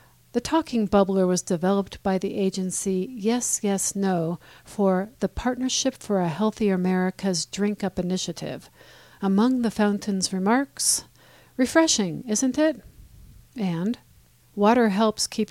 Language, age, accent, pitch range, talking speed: English, 50-69, American, 175-215 Hz, 125 wpm